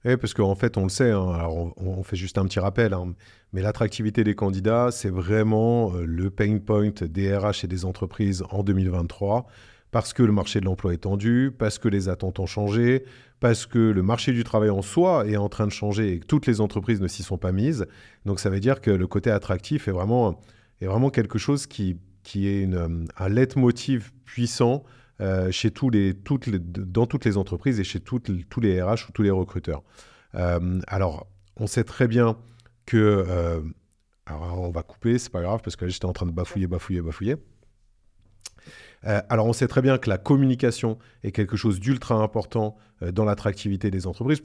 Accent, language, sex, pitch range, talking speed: French, French, male, 95-120 Hz, 210 wpm